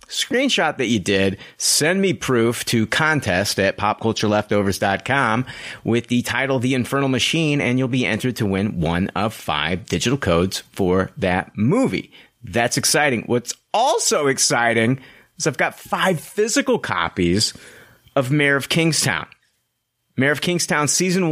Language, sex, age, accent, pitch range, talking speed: English, male, 30-49, American, 110-155 Hz, 140 wpm